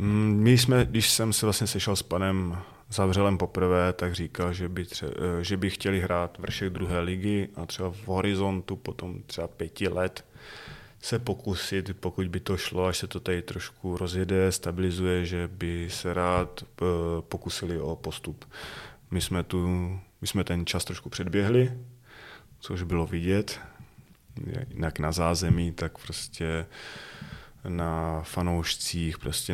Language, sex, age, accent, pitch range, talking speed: Czech, male, 20-39, native, 85-95 Hz, 145 wpm